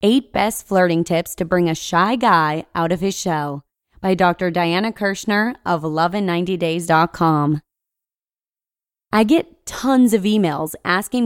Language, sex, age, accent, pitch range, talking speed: English, female, 20-39, American, 170-225 Hz, 135 wpm